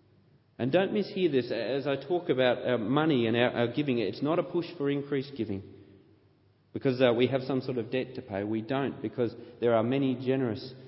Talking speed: 195 wpm